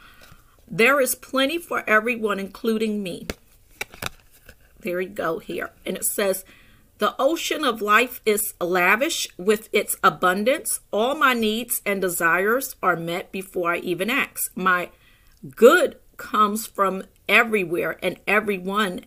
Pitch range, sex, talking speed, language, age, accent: 180-235 Hz, female, 130 wpm, English, 40-59, American